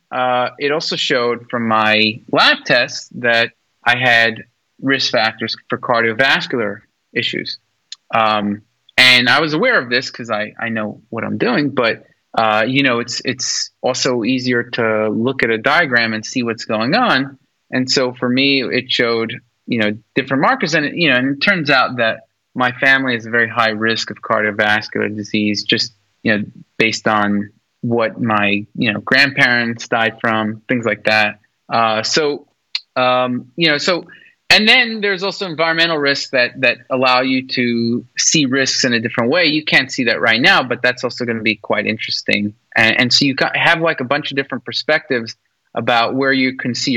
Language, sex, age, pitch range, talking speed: English, male, 30-49, 115-140 Hz, 190 wpm